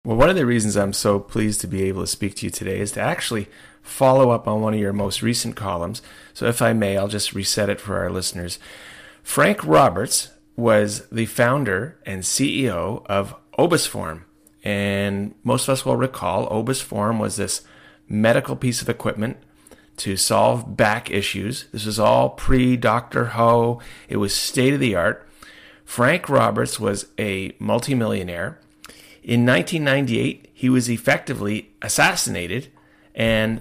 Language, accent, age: English, American, 30-49